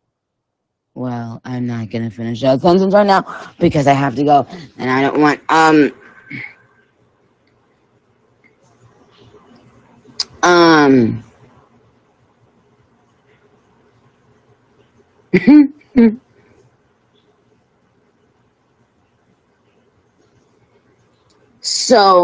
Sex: female